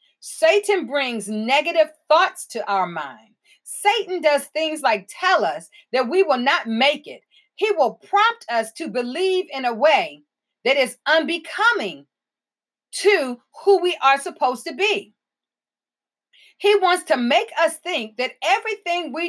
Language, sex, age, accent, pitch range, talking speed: English, female, 40-59, American, 250-360 Hz, 145 wpm